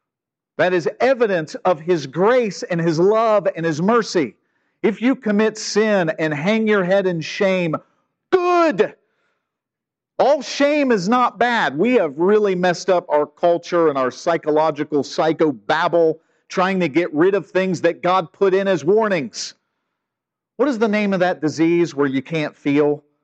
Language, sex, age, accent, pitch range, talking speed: English, male, 50-69, American, 145-195 Hz, 160 wpm